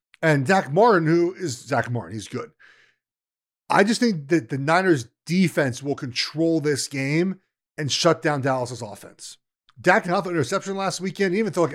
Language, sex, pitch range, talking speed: English, male, 135-190 Hz, 175 wpm